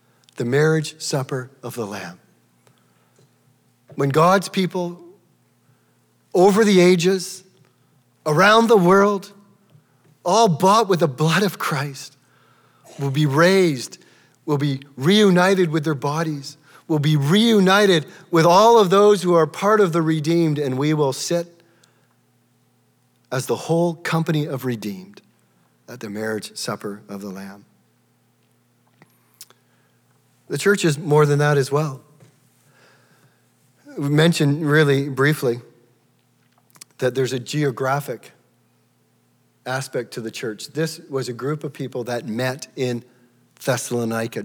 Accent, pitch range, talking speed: American, 125-165 Hz, 125 wpm